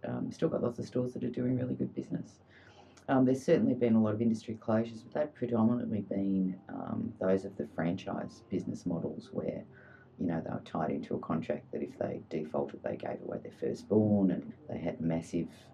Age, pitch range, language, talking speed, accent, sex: 30-49, 85-110 Hz, English, 205 wpm, Australian, female